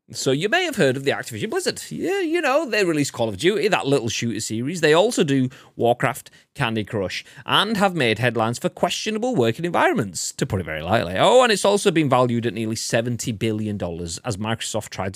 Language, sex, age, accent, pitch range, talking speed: English, male, 30-49, British, 105-160 Hz, 210 wpm